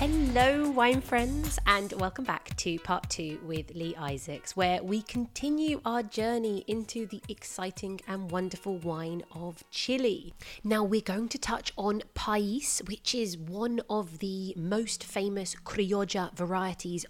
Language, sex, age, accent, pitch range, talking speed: English, female, 30-49, British, 185-245 Hz, 145 wpm